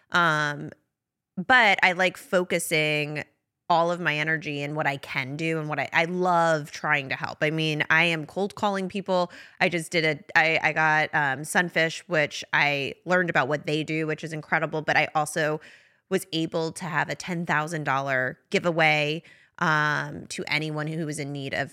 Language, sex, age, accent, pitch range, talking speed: English, female, 20-39, American, 150-175 Hz, 180 wpm